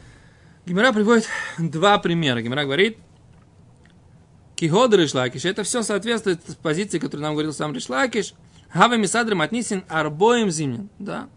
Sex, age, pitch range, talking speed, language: male, 20-39, 155-225 Hz, 115 wpm, Russian